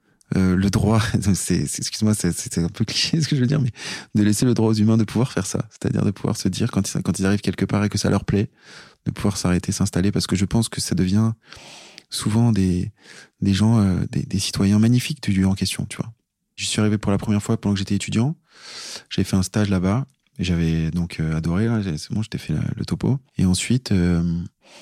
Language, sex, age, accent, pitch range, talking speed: French, male, 20-39, French, 90-105 Hz, 245 wpm